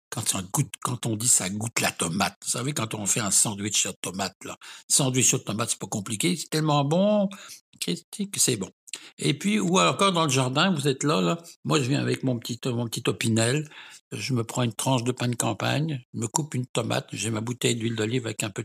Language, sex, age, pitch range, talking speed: French, male, 60-79, 110-135 Hz, 235 wpm